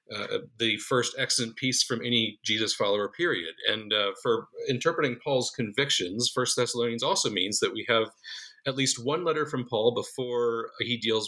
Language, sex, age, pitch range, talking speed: English, male, 40-59, 110-150 Hz, 170 wpm